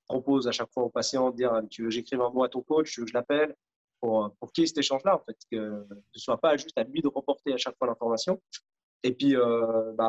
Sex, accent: male, French